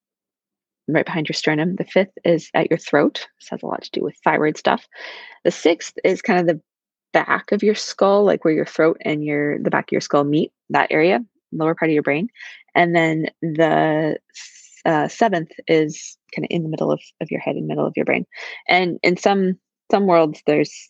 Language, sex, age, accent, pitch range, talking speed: English, female, 20-39, American, 150-195 Hz, 215 wpm